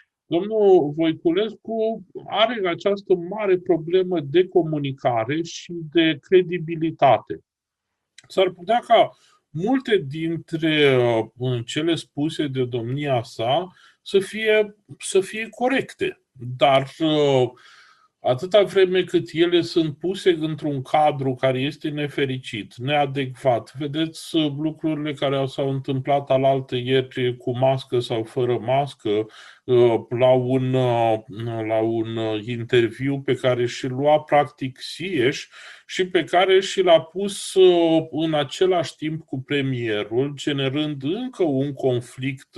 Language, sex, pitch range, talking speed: Romanian, male, 125-175 Hz, 105 wpm